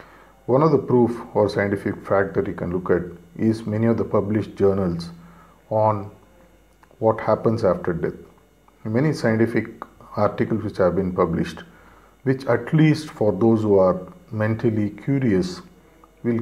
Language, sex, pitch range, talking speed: English, male, 90-115 Hz, 145 wpm